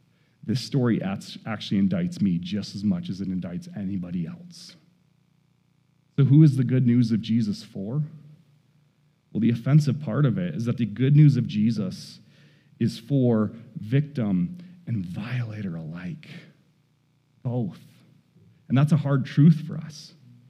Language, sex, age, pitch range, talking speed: English, male, 40-59, 150-195 Hz, 145 wpm